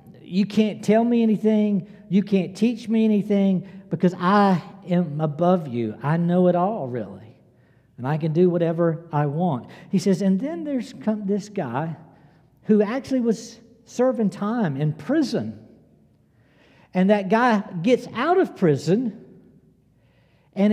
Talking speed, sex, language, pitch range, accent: 145 wpm, male, English, 160-230 Hz, American